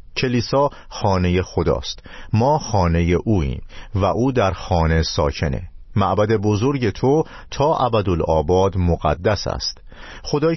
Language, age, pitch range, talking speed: Persian, 50-69, 85-120 Hz, 110 wpm